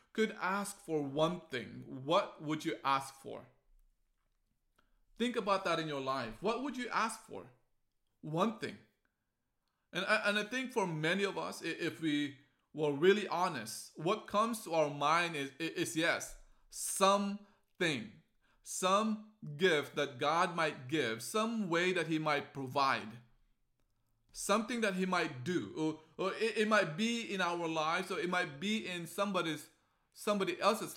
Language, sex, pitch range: English, male, 135-180 Hz